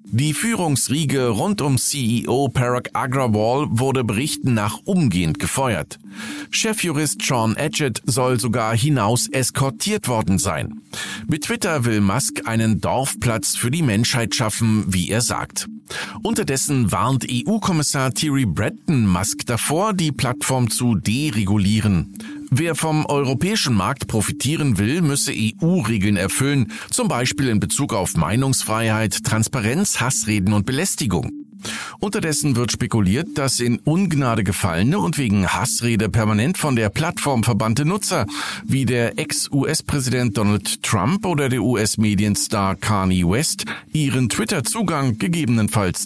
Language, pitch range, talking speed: German, 110-150 Hz, 120 wpm